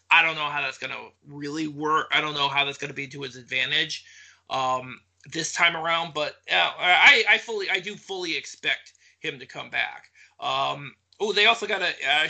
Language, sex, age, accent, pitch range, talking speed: English, male, 30-49, American, 140-175 Hz, 215 wpm